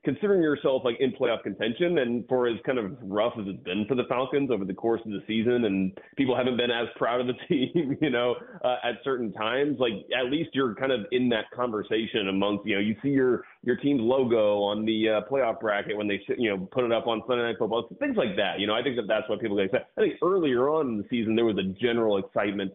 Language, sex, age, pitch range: English, male, 30-49, 105-125 Hz